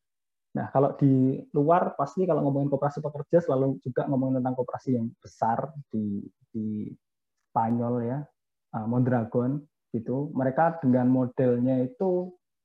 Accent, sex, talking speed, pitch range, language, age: native, male, 125 wpm, 120-140 Hz, Indonesian, 20-39